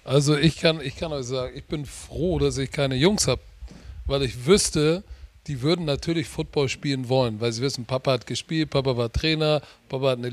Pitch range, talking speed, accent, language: 140-175 Hz, 210 wpm, German, German